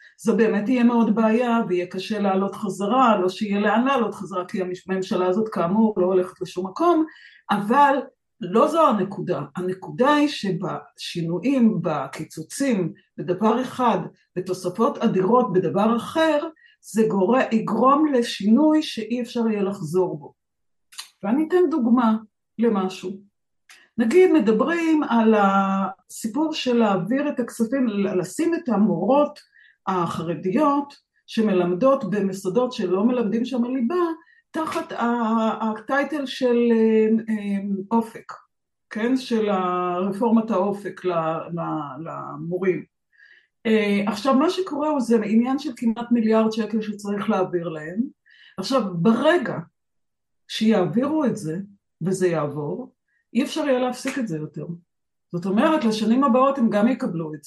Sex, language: female, Hebrew